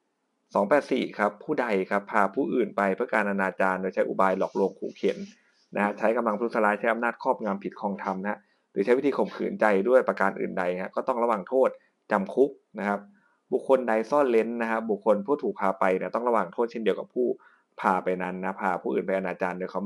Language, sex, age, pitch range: Thai, male, 20-39, 95-110 Hz